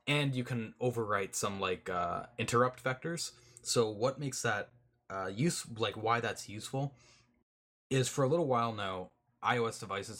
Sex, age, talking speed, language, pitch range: male, 20-39, 160 wpm, English, 95-125 Hz